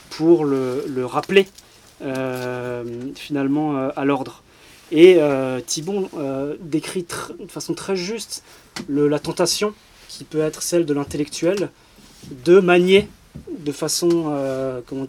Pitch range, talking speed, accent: 140-175 Hz, 135 wpm, French